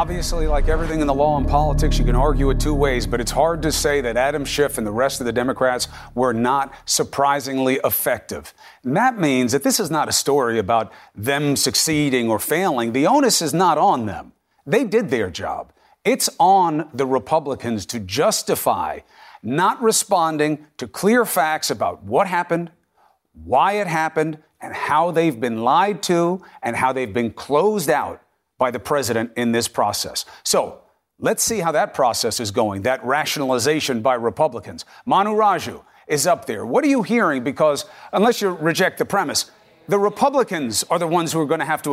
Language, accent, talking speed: English, American, 185 wpm